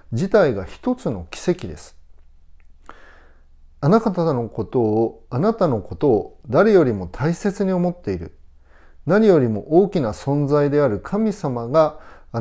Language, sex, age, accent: Japanese, male, 40-59, native